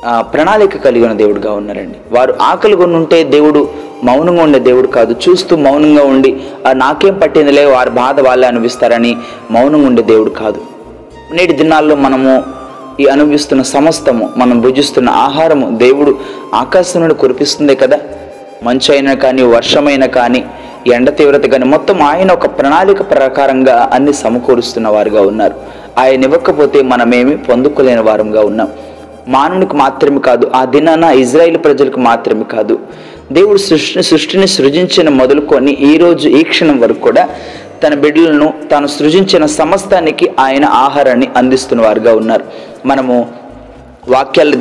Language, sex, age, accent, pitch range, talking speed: Telugu, male, 30-49, native, 130-165 Hz, 120 wpm